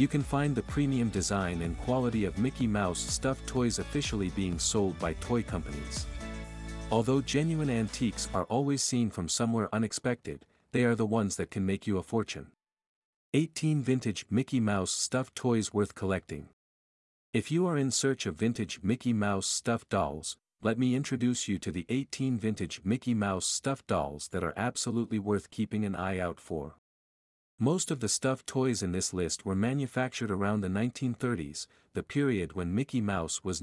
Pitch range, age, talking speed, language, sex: 95-125 Hz, 50-69, 175 wpm, English, male